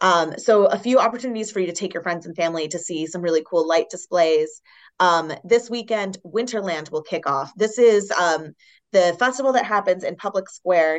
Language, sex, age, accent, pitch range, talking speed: English, female, 30-49, American, 160-195 Hz, 200 wpm